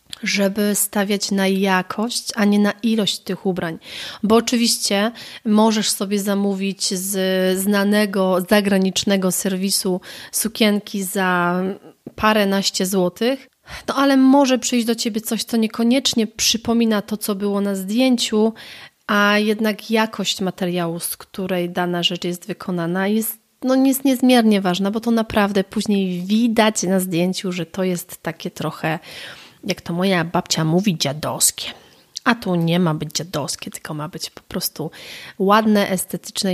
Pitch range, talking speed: 185-220 Hz, 140 wpm